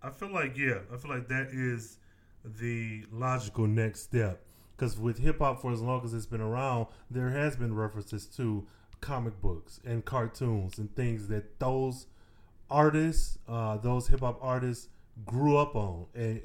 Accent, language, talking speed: American, English, 170 wpm